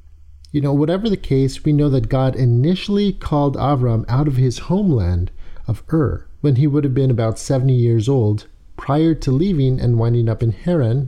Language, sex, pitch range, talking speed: English, male, 105-145 Hz, 190 wpm